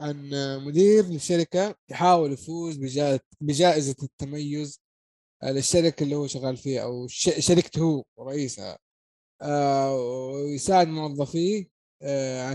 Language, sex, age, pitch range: Arabic, male, 20-39, 140-170 Hz